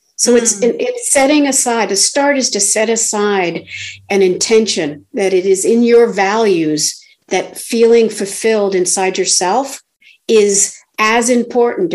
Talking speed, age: 135 wpm, 50-69